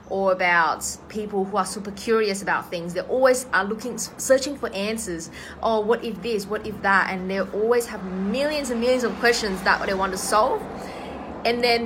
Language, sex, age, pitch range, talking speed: English, female, 20-39, 180-220 Hz, 195 wpm